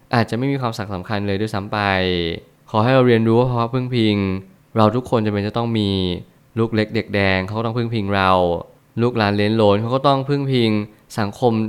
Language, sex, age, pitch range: Thai, male, 20-39, 105-125 Hz